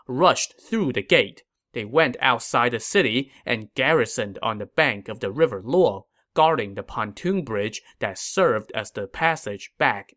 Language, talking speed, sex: English, 165 wpm, male